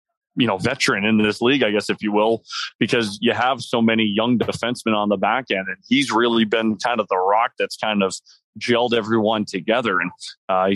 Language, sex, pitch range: English, male, 110-125 Hz